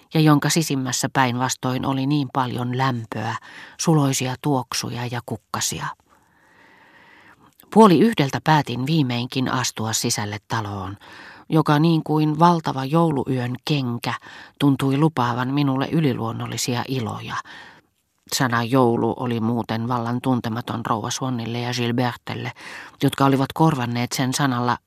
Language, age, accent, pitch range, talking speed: Finnish, 40-59, native, 120-150 Hz, 105 wpm